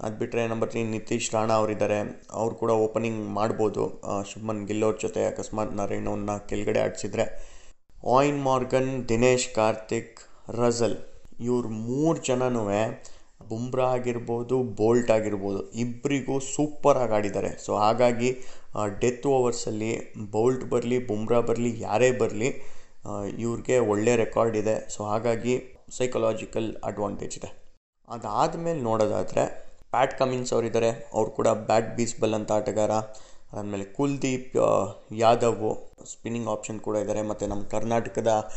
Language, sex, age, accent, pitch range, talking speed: Kannada, male, 20-39, native, 105-125 Hz, 115 wpm